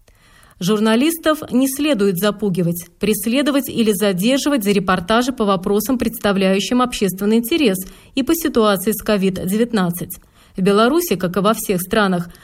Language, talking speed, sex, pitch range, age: Russian, 125 wpm, female, 195-245 Hz, 30-49